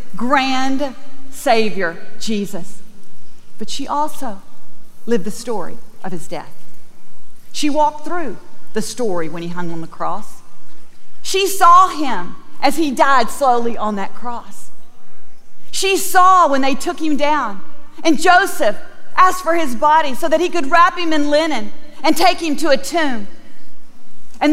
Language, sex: English, female